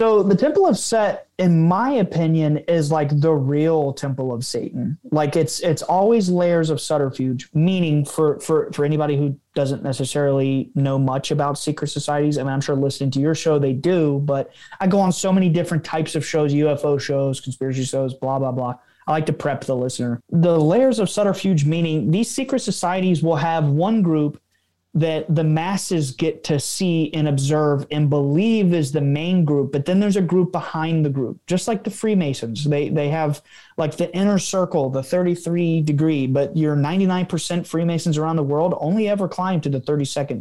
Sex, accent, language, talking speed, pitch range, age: male, American, English, 195 wpm, 145-175 Hz, 20-39